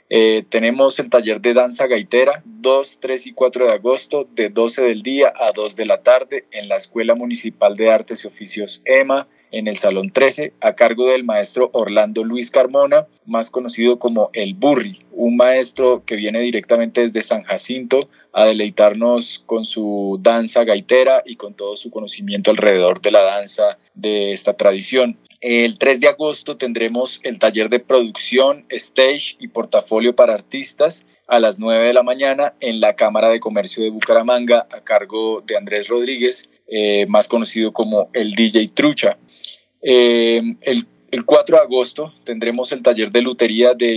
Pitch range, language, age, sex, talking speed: 110-130 Hz, Spanish, 20-39, male, 170 wpm